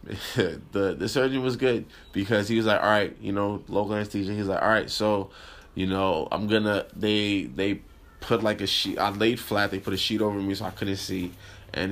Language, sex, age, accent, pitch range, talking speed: English, male, 20-39, American, 100-115 Hz, 220 wpm